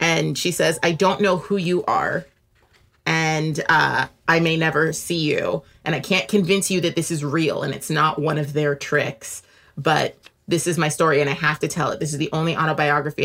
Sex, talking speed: female, 220 wpm